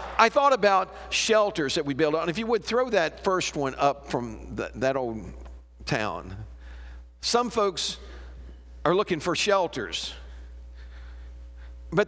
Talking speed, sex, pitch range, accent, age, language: 135 wpm, male, 195-265 Hz, American, 50-69, English